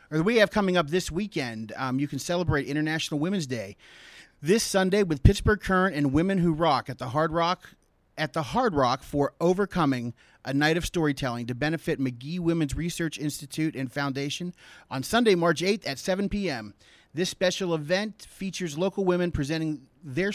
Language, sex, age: English, male, 30-49